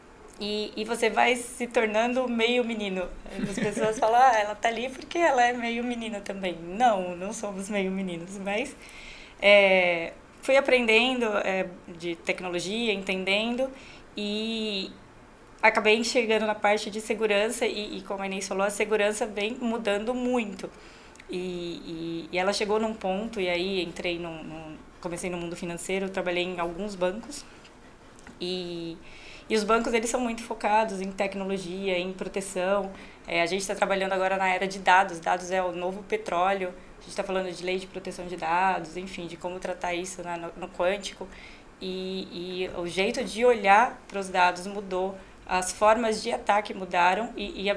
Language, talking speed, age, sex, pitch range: Portuguese, 170 wpm, 20-39, female, 180-220 Hz